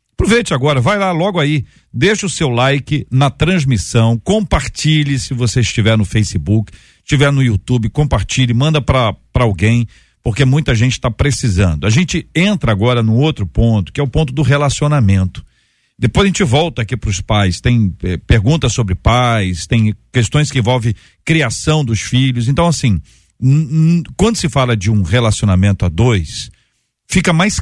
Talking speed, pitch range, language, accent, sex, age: 160 wpm, 110-145 Hz, Portuguese, Brazilian, male, 50-69